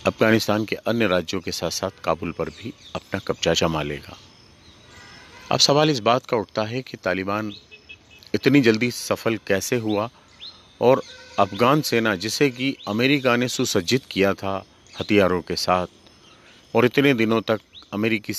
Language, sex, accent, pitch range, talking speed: Hindi, male, native, 95-120 Hz, 150 wpm